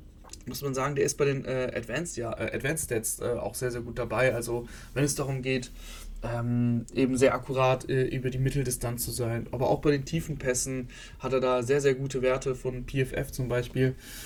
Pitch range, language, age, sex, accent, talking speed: 115-140 Hz, German, 20-39, male, German, 210 wpm